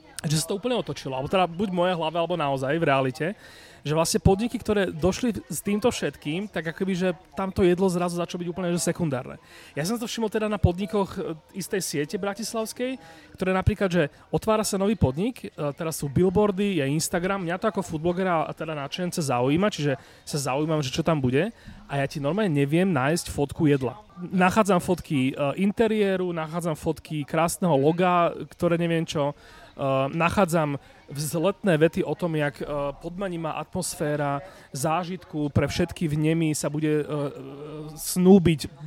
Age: 30-49